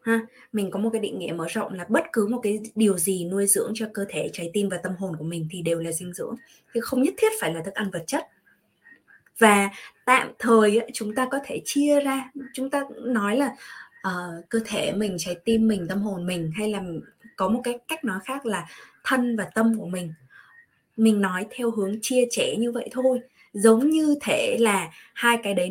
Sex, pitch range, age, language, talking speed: female, 190-245 Hz, 20-39, Vietnamese, 225 wpm